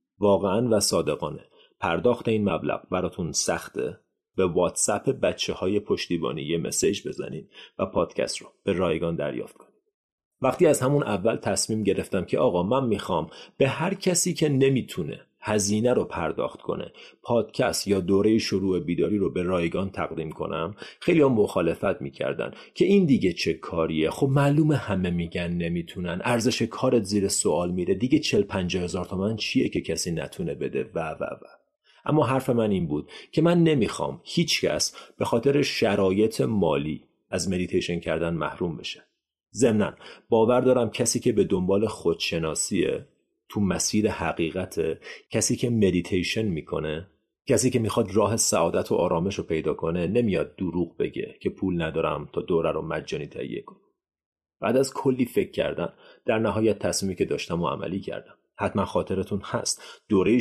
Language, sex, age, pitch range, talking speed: Persian, male, 30-49, 90-130 Hz, 155 wpm